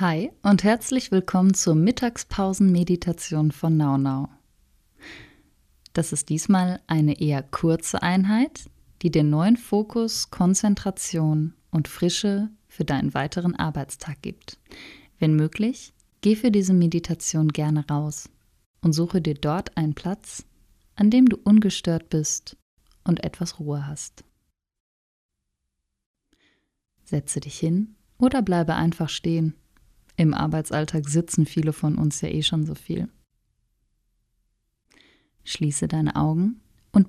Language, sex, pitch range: German, female, 145-190 Hz